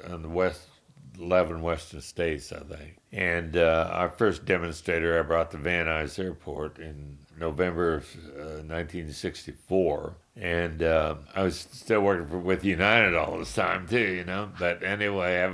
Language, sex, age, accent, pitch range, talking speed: English, male, 60-79, American, 80-95 Hz, 160 wpm